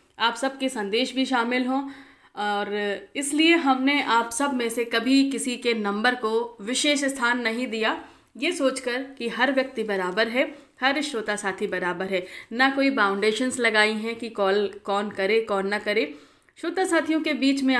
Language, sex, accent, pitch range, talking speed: Hindi, female, native, 205-265 Hz, 175 wpm